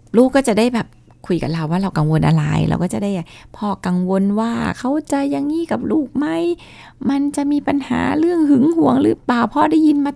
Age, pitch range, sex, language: 20-39, 155-200 Hz, female, Thai